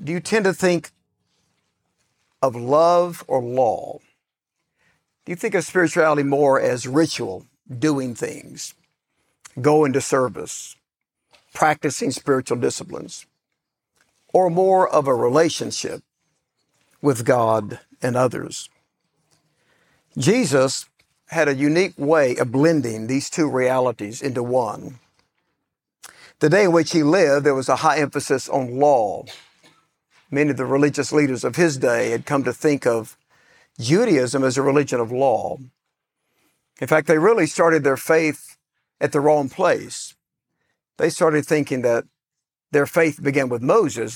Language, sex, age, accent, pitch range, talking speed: English, male, 60-79, American, 130-155 Hz, 135 wpm